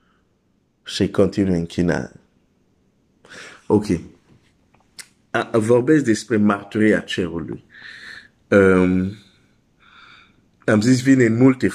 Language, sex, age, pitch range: Romanian, male, 50-69, 100-125 Hz